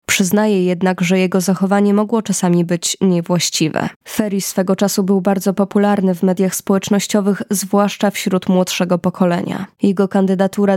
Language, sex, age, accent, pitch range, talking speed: Polish, female, 20-39, native, 185-200 Hz, 135 wpm